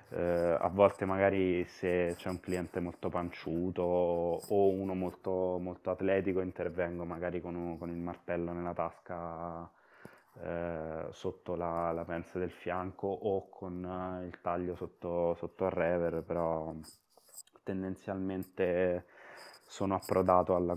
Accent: Italian